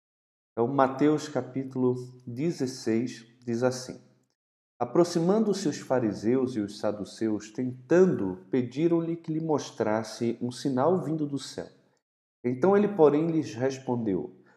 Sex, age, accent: male, 40-59, Brazilian